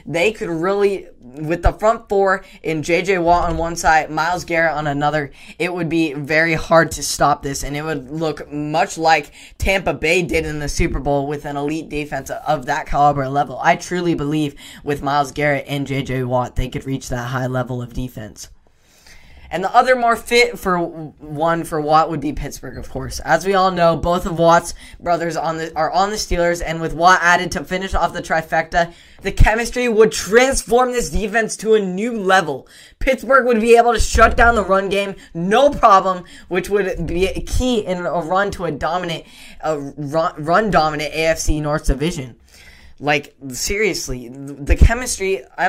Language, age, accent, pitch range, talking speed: English, 10-29, American, 145-185 Hz, 190 wpm